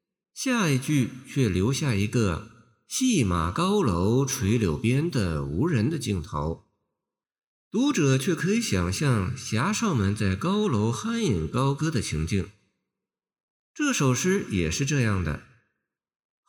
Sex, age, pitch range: male, 50-69, 95-145 Hz